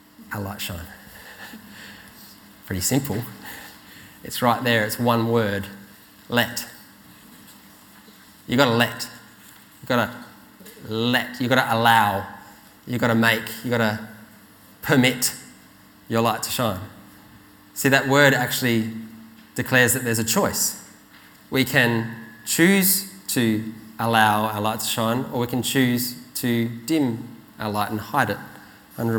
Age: 20-39